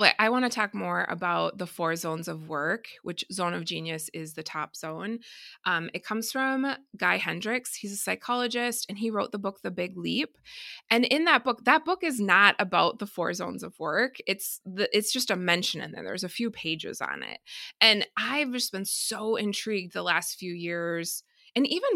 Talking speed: 205 wpm